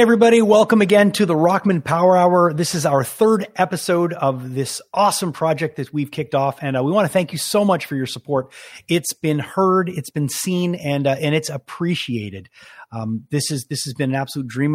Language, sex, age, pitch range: English, male, 30-49, 125-175 Hz